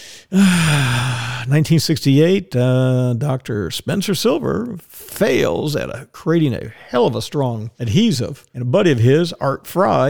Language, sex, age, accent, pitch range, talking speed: English, male, 50-69, American, 130-175 Hz, 135 wpm